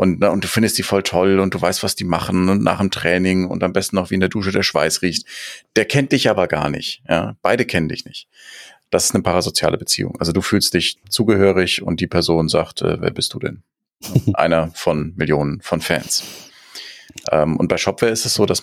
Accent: German